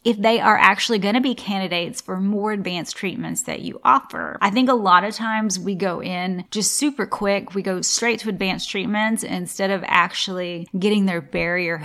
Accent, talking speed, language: American, 200 wpm, English